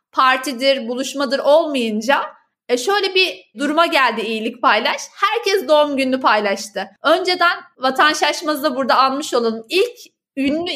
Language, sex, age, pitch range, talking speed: Turkish, female, 30-49, 255-330 Hz, 130 wpm